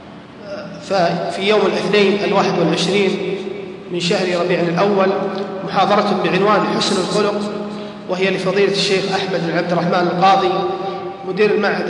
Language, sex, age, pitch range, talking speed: Arabic, male, 30-49, 180-200 Hz, 115 wpm